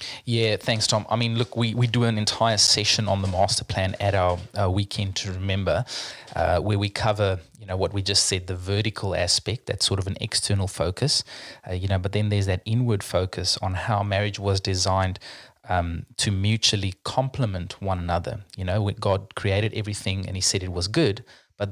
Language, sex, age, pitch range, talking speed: English, male, 20-39, 95-110 Hz, 205 wpm